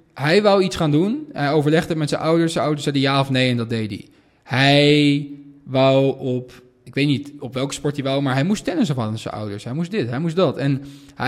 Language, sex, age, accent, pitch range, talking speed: Dutch, male, 20-39, Dutch, 130-165 Hz, 250 wpm